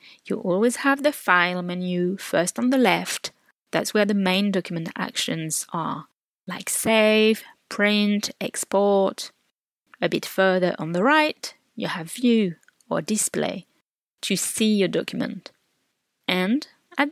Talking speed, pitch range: 135 wpm, 185-260 Hz